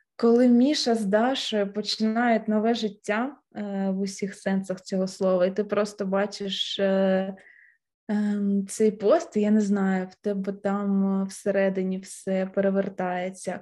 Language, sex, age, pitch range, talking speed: Ukrainian, female, 20-39, 195-235 Hz, 135 wpm